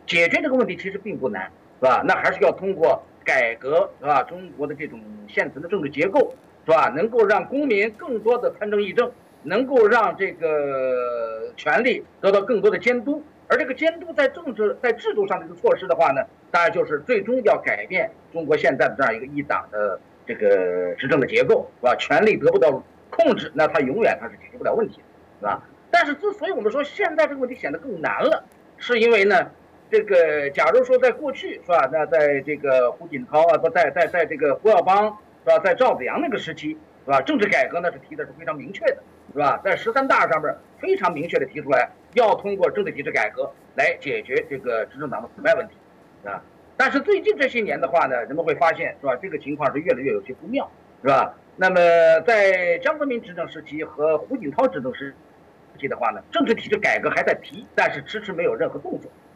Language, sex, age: English, male, 50-69